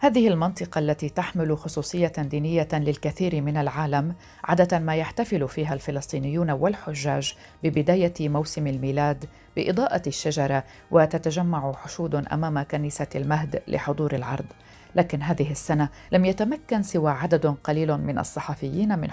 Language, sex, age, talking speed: Arabic, female, 40-59, 120 wpm